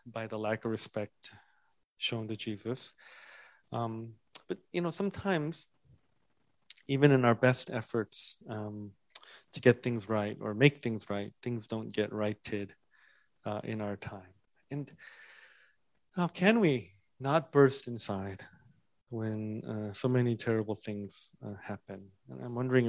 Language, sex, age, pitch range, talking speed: English, male, 30-49, 110-140 Hz, 140 wpm